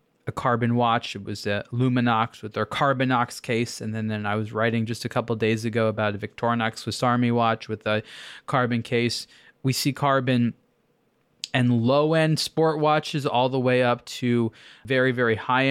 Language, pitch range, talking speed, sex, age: English, 120-140 Hz, 180 wpm, male, 20-39